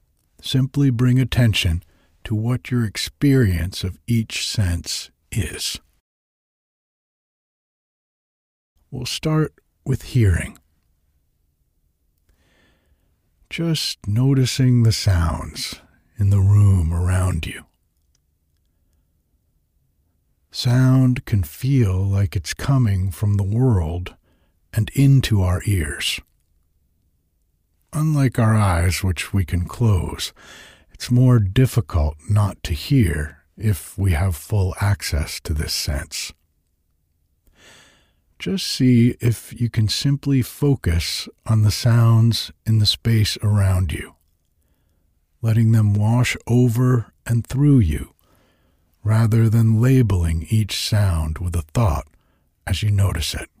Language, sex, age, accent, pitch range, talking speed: English, male, 60-79, American, 80-115 Hz, 105 wpm